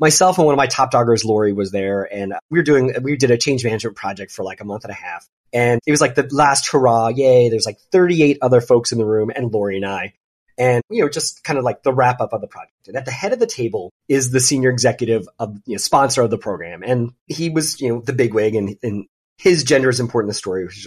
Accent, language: American, English